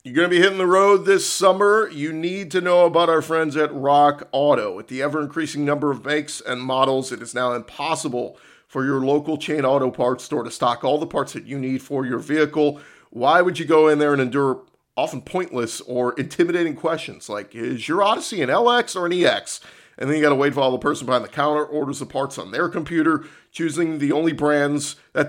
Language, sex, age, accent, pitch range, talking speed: English, male, 40-59, American, 135-165 Hz, 225 wpm